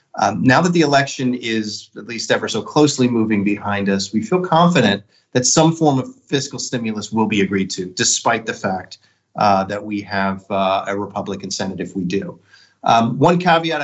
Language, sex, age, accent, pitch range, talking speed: English, male, 30-49, American, 105-145 Hz, 190 wpm